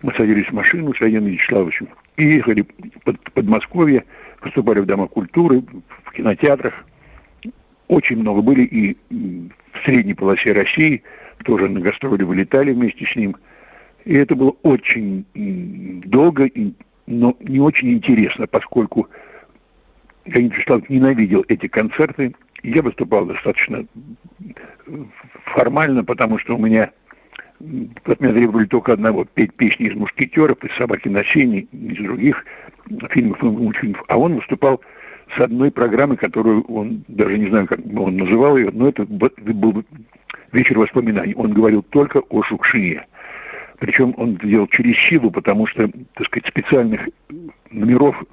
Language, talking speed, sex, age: Russian, 135 wpm, male, 60-79